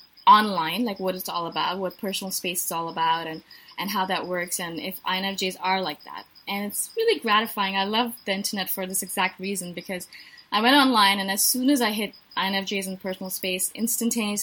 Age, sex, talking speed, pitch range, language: 20-39, female, 210 wpm, 185-230 Hz, English